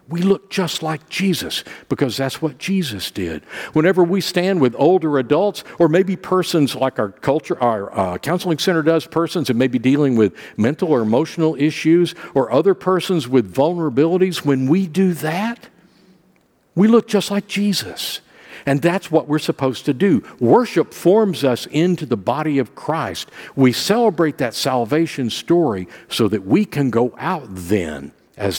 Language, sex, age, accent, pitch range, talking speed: English, male, 50-69, American, 115-175 Hz, 165 wpm